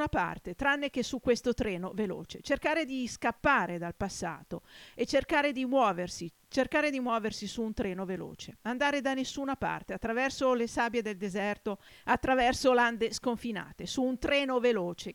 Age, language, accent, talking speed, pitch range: 50-69, Italian, native, 155 wpm, 205-270 Hz